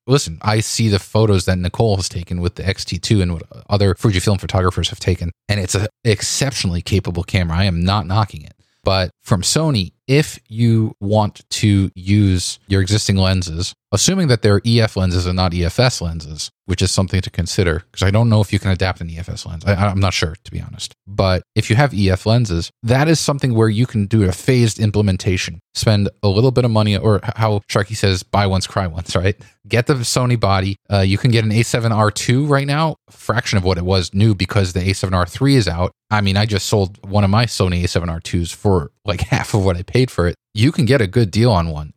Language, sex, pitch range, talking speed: English, male, 95-115 Hz, 225 wpm